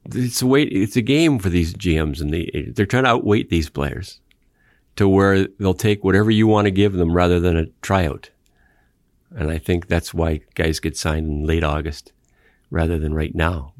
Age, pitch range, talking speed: 50-69, 80-95 Hz, 200 wpm